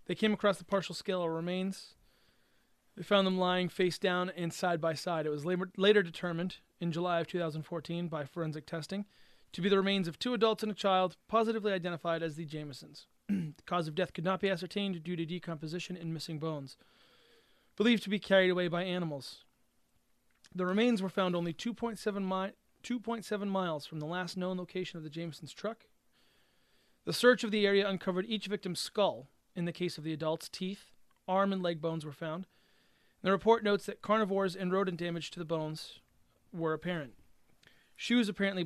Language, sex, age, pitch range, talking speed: English, male, 30-49, 170-195 Hz, 185 wpm